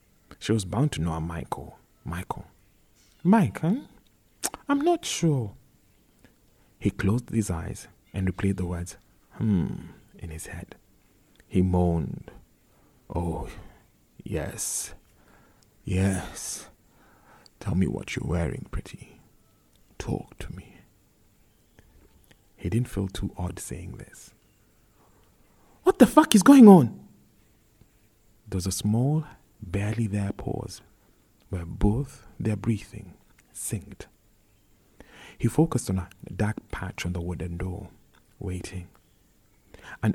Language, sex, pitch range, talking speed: English, male, 95-115 Hz, 110 wpm